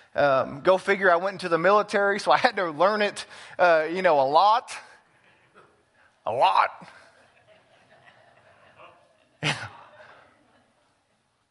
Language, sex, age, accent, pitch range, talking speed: English, male, 30-49, American, 155-215 Hz, 115 wpm